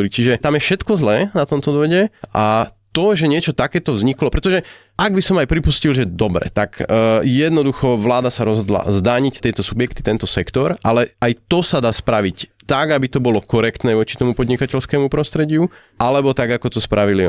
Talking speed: 185 wpm